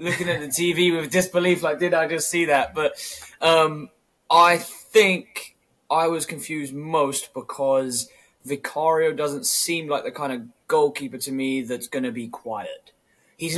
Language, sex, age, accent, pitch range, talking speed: English, male, 20-39, British, 125-170 Hz, 165 wpm